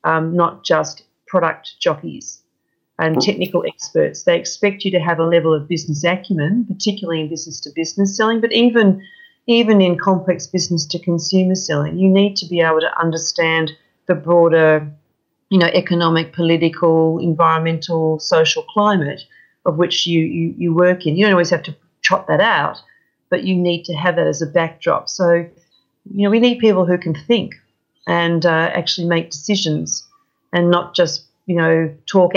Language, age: English, 40-59